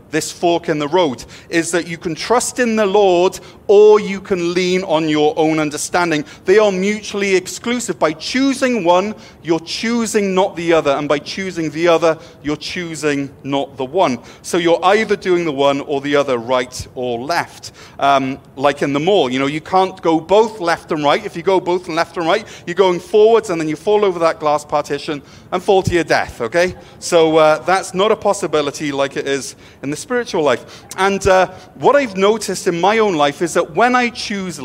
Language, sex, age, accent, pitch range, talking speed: English, male, 40-59, British, 150-190 Hz, 210 wpm